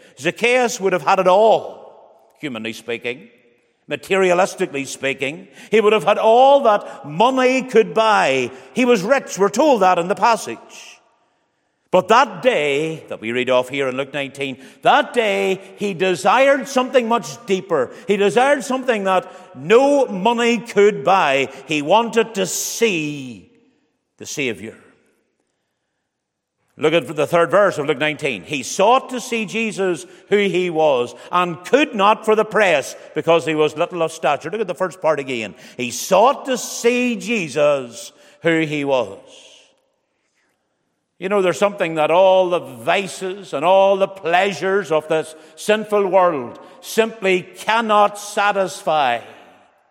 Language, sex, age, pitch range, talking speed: English, male, 50-69, 160-230 Hz, 145 wpm